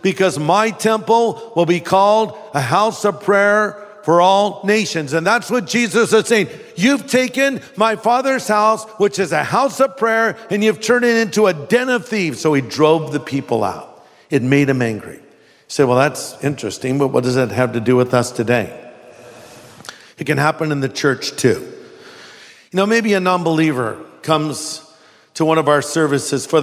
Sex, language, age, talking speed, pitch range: male, English, 50-69, 185 wpm, 145-205 Hz